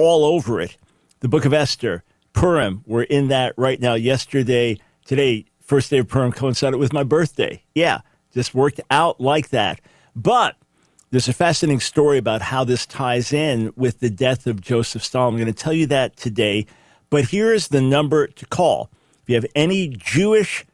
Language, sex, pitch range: English, male, 120-145 Hz